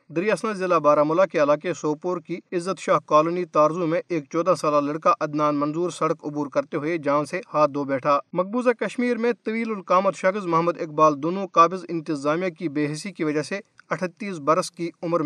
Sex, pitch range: male, 150-180 Hz